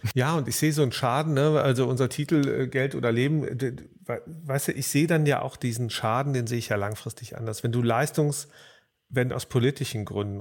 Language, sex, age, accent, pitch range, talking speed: German, male, 40-59, German, 110-135 Hz, 210 wpm